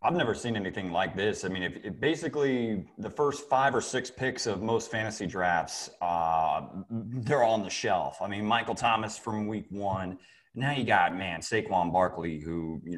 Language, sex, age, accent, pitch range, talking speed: English, male, 30-49, American, 90-115 Hz, 195 wpm